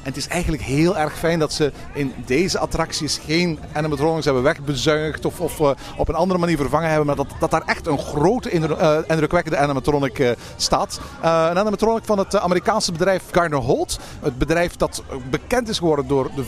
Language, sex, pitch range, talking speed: Dutch, male, 140-180 Hz, 195 wpm